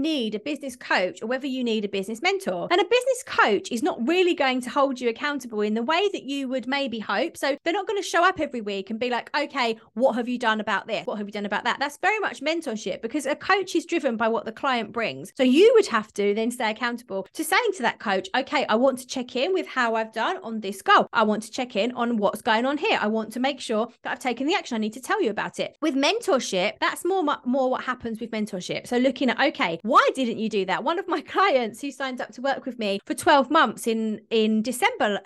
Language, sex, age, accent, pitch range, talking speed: English, female, 30-49, British, 225-320 Hz, 270 wpm